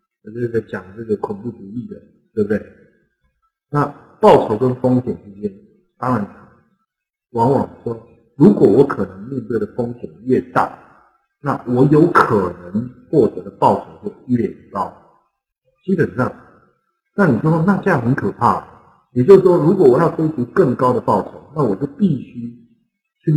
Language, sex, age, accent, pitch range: Chinese, male, 50-69, native, 115-195 Hz